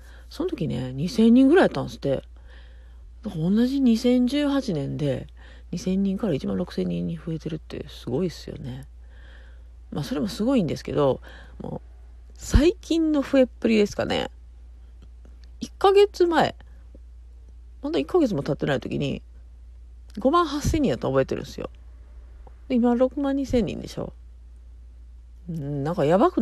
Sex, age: female, 40-59